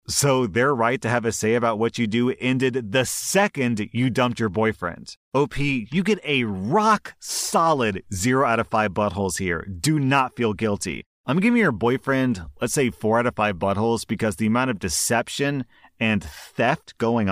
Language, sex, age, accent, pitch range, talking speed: English, male, 30-49, American, 100-140 Hz, 185 wpm